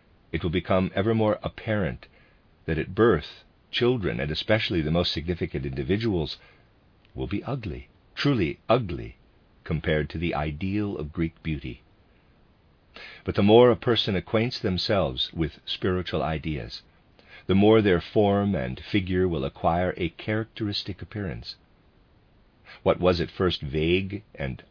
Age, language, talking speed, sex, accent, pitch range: 50-69, English, 135 wpm, male, American, 80-105 Hz